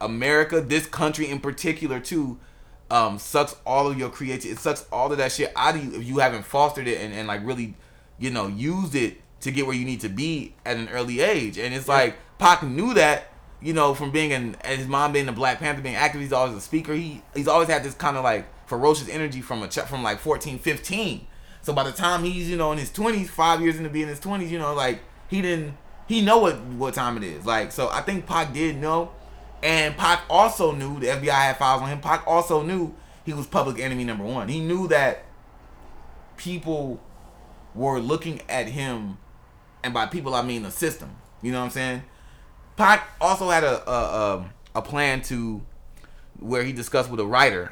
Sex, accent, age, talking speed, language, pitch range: male, American, 20-39, 220 wpm, English, 120-155 Hz